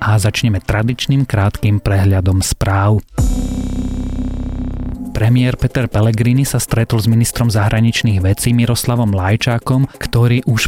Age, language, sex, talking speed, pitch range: 30-49, Slovak, male, 105 wpm, 105-120 Hz